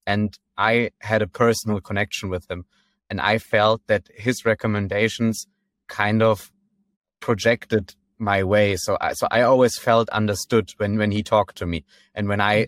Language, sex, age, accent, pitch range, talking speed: English, male, 20-39, German, 95-115 Hz, 165 wpm